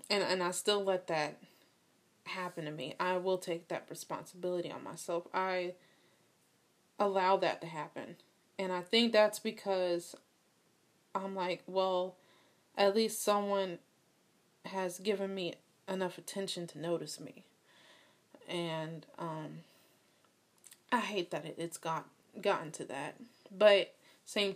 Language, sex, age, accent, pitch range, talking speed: English, female, 20-39, American, 170-205 Hz, 125 wpm